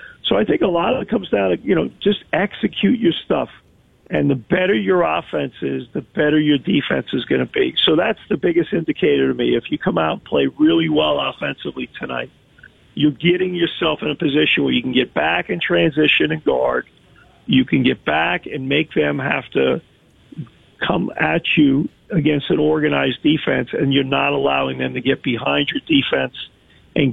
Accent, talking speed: American, 195 wpm